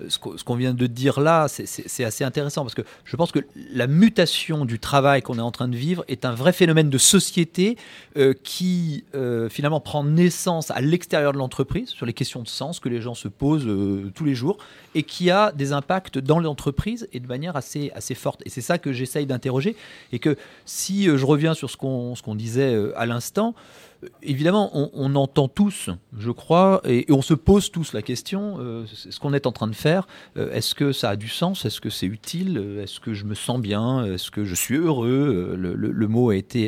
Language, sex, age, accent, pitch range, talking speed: French, male, 40-59, French, 120-160 Hz, 220 wpm